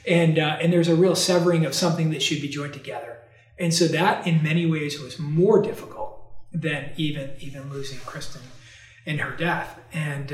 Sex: male